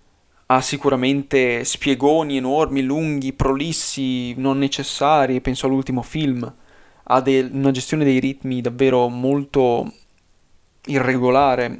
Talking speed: 95 wpm